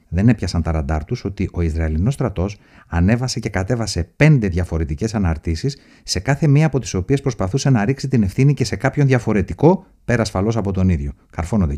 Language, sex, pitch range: Greek, male, 90-120 Hz